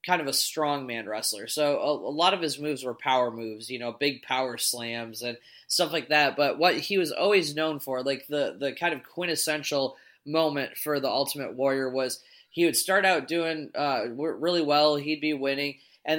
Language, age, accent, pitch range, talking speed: English, 20-39, American, 130-155 Hz, 210 wpm